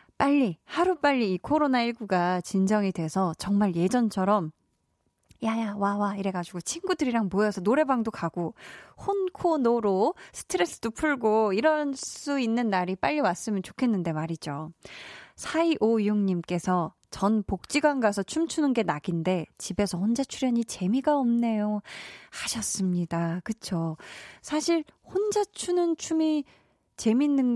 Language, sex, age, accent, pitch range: Korean, female, 20-39, native, 195-275 Hz